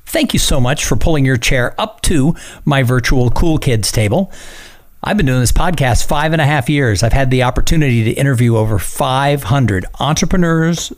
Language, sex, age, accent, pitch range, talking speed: English, male, 50-69, American, 115-145 Hz, 185 wpm